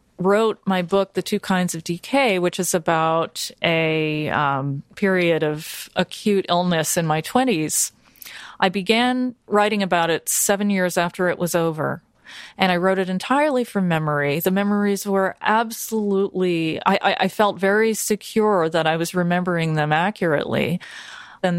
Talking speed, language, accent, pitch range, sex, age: 155 wpm, English, American, 175-210 Hz, female, 30-49